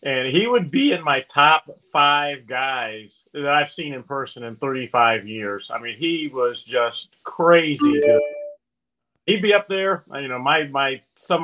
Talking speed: 170 wpm